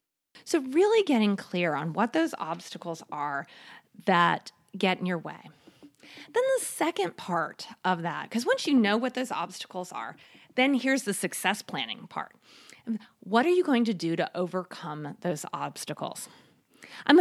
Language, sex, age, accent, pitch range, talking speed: English, female, 30-49, American, 175-230 Hz, 155 wpm